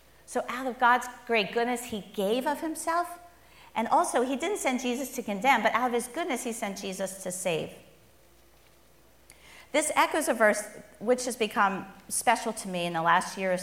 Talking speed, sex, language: 190 wpm, female, English